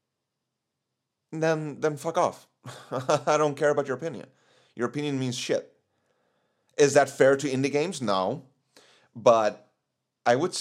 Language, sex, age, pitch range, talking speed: English, male, 30-49, 105-145 Hz, 135 wpm